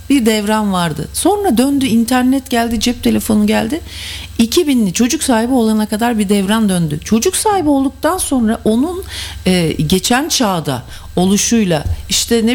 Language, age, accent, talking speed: English, 40-59, Turkish, 140 wpm